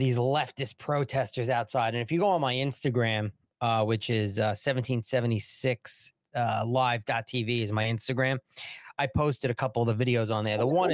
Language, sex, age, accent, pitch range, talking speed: English, male, 30-49, American, 120-160 Hz, 175 wpm